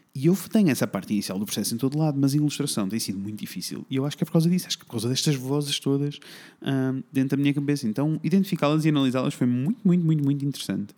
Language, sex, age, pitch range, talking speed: Portuguese, male, 20-39, 115-160 Hz, 270 wpm